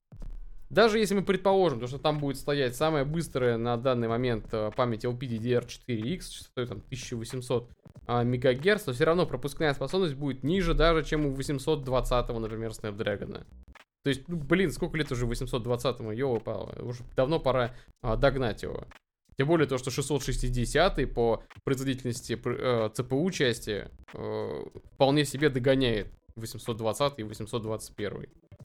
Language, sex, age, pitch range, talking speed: Russian, male, 20-39, 115-160 Hz, 125 wpm